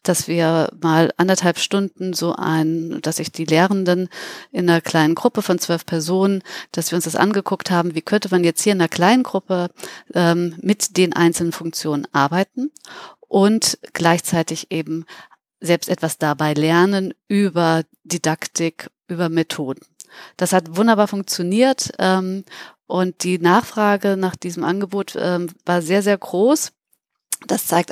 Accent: German